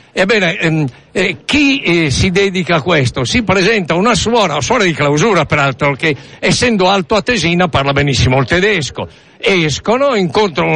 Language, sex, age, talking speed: Italian, male, 60-79, 160 wpm